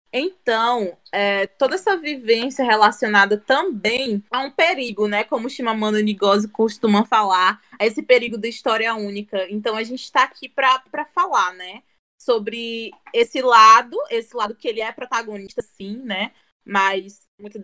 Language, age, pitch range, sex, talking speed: Portuguese, 20-39, 210-255 Hz, female, 150 wpm